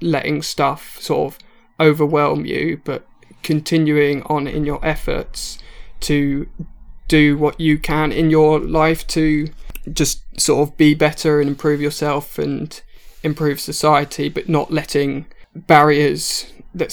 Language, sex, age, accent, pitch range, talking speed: English, male, 20-39, British, 145-160 Hz, 130 wpm